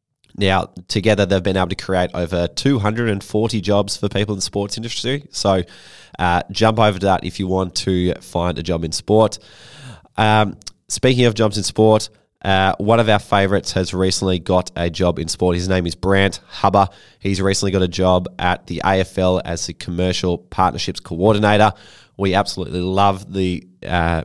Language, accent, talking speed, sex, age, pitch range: English, Australian, 180 wpm, male, 20-39, 90-105 Hz